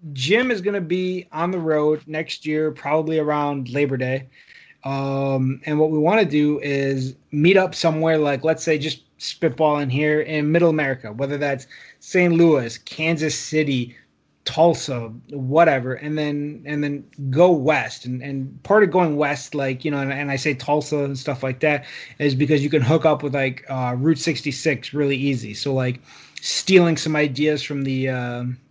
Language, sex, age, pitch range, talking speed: English, male, 20-39, 140-165 Hz, 185 wpm